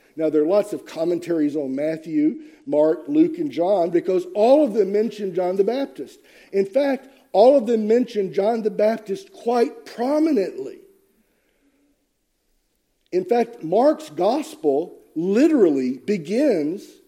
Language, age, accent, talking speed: English, 50-69, American, 130 wpm